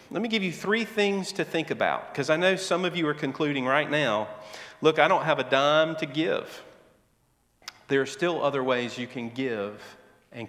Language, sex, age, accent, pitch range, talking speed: English, male, 40-59, American, 125-175 Hz, 205 wpm